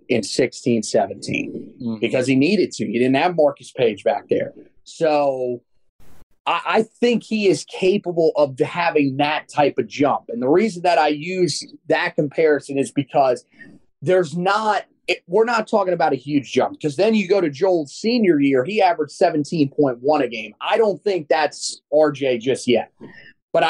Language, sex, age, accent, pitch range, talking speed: English, male, 30-49, American, 145-190 Hz, 170 wpm